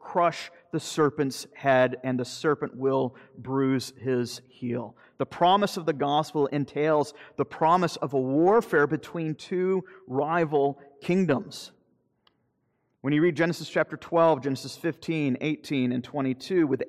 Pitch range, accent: 130-160 Hz, American